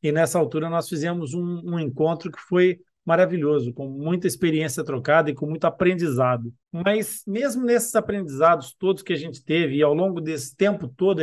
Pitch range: 155-200 Hz